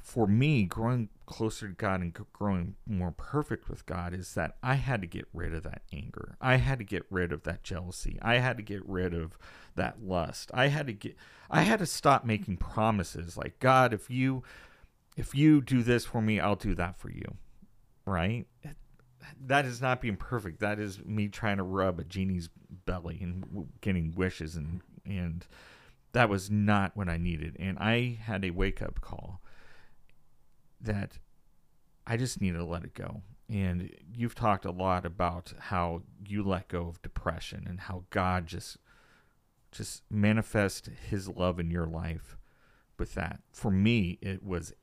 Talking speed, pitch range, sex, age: 180 wpm, 90-115 Hz, male, 40-59